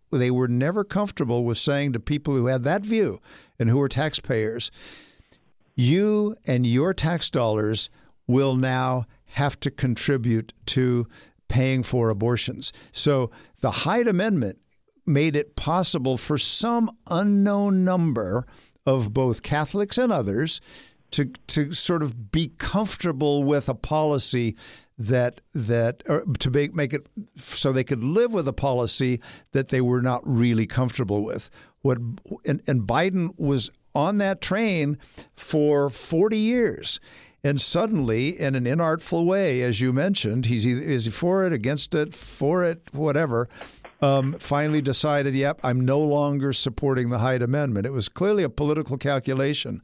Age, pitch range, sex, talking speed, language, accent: 60-79, 125-160 Hz, male, 150 wpm, English, American